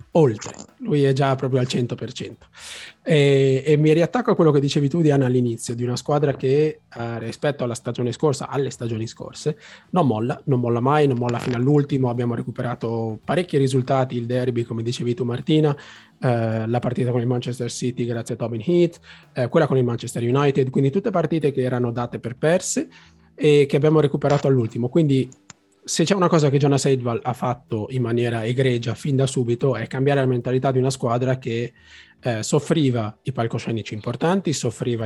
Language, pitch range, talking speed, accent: Italian, 115-145 Hz, 185 wpm, native